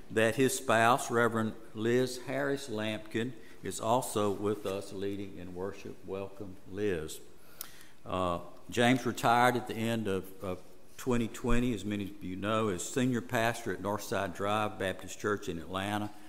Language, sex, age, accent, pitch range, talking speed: English, male, 60-79, American, 95-115 Hz, 145 wpm